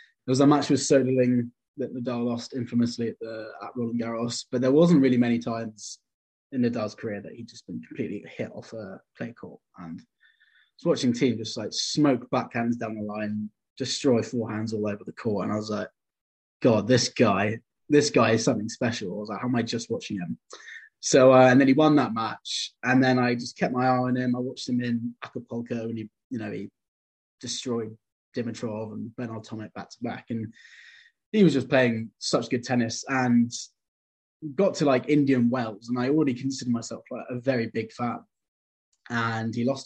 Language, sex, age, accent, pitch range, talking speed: English, male, 20-39, British, 115-130 Hz, 200 wpm